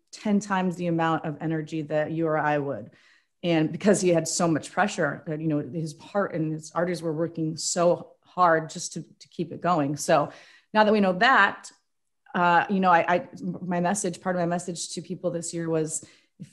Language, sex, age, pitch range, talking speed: English, female, 30-49, 165-200 Hz, 215 wpm